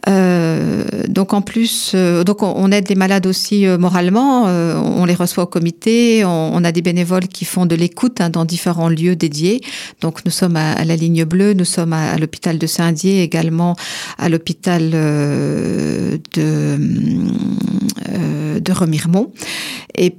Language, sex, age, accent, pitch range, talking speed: French, female, 50-69, French, 165-195 Hz, 170 wpm